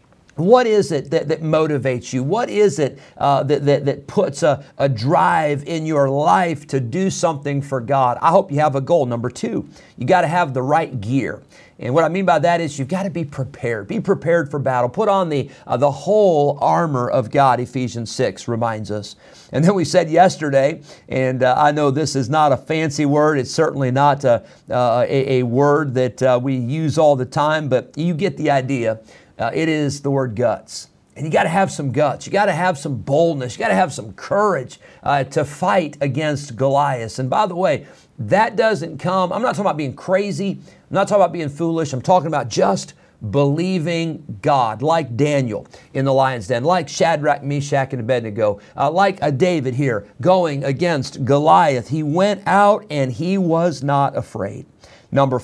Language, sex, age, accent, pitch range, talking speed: English, male, 50-69, American, 130-170 Hz, 200 wpm